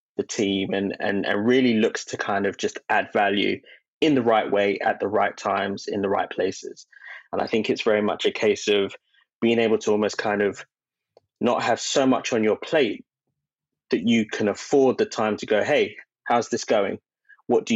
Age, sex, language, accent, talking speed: 20-39, male, English, British, 205 wpm